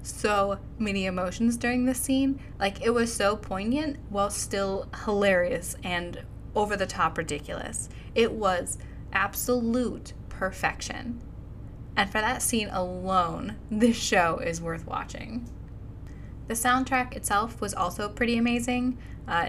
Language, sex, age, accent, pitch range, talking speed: English, female, 10-29, American, 160-210 Hz, 125 wpm